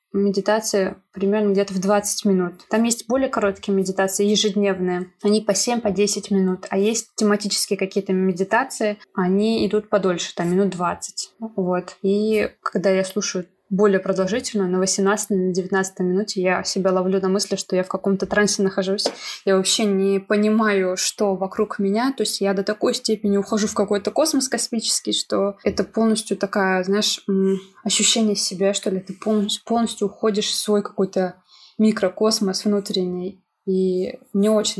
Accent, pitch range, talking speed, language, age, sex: native, 190-215 Hz, 155 wpm, Russian, 20-39, female